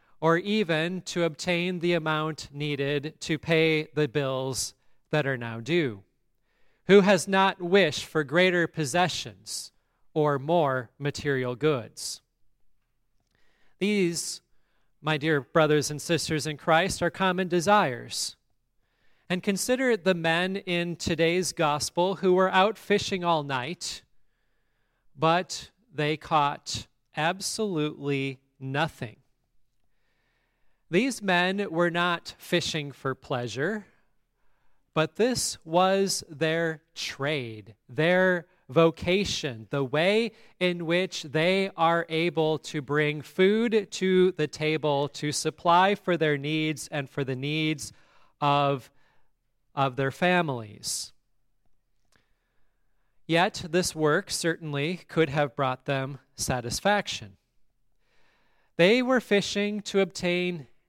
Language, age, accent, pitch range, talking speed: English, 30-49, American, 140-180 Hz, 105 wpm